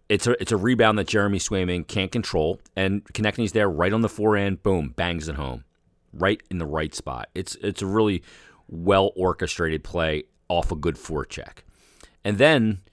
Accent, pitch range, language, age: American, 85-110 Hz, English, 40-59